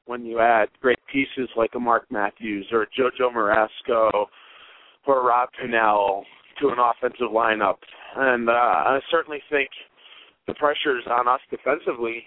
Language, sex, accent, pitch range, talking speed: English, male, American, 115-135 Hz, 155 wpm